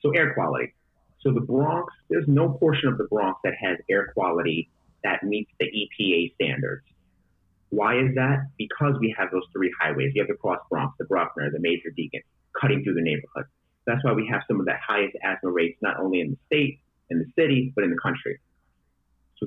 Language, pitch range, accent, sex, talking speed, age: English, 85-130 Hz, American, male, 205 wpm, 30-49